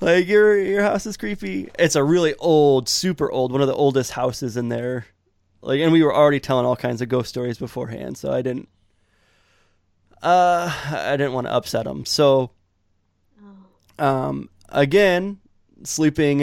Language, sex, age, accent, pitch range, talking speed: English, male, 20-39, American, 115-145 Hz, 165 wpm